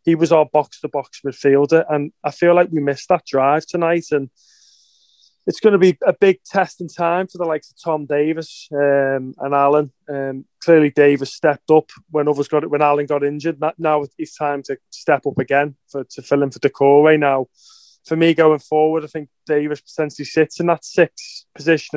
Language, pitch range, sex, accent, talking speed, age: English, 140-160 Hz, male, British, 205 wpm, 20-39